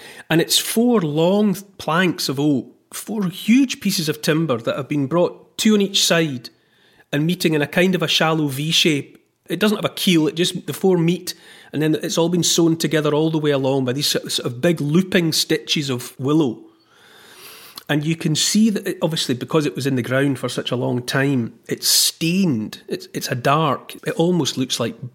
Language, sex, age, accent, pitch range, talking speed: English, male, 30-49, British, 135-175 Hz, 210 wpm